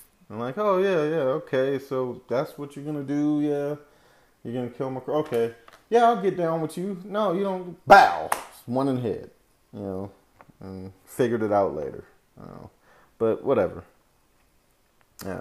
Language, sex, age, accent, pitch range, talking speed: English, male, 30-49, American, 100-125 Hz, 185 wpm